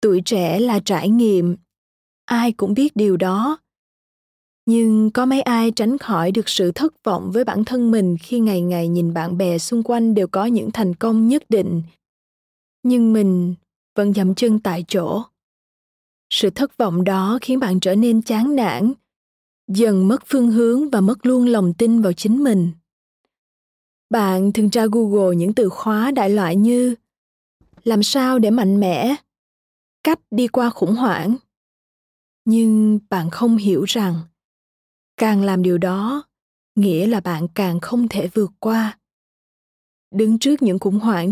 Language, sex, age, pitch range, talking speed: Vietnamese, female, 20-39, 190-240 Hz, 160 wpm